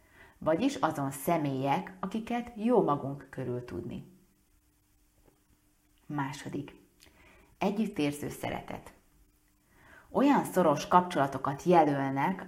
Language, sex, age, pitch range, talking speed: Hungarian, female, 30-49, 140-185 Hz, 70 wpm